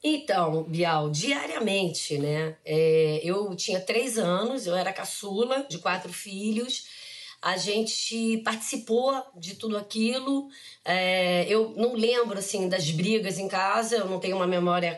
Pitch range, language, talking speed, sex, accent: 185-235 Hz, Portuguese, 130 wpm, female, Brazilian